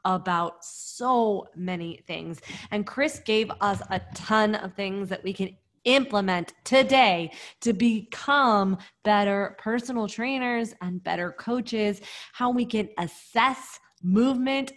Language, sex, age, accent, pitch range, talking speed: English, female, 20-39, American, 185-235 Hz, 120 wpm